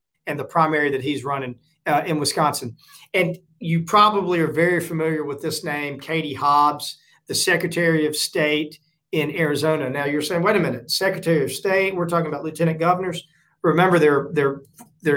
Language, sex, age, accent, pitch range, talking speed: English, male, 40-59, American, 145-170 Hz, 170 wpm